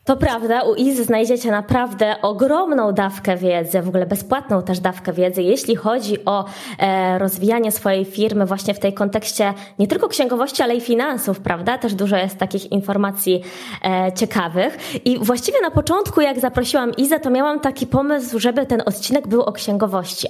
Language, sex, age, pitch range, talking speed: Polish, female, 20-39, 200-260 Hz, 170 wpm